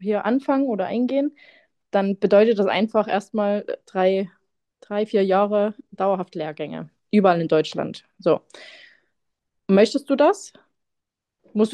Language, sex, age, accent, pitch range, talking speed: German, female, 20-39, German, 190-240 Hz, 120 wpm